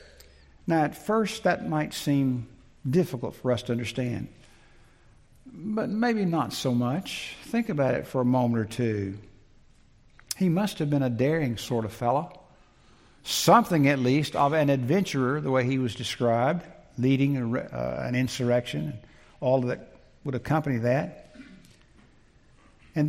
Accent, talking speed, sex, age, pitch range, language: American, 150 wpm, male, 60-79, 120-155 Hz, English